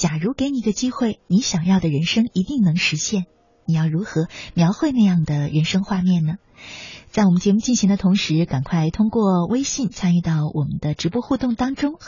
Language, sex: Chinese, female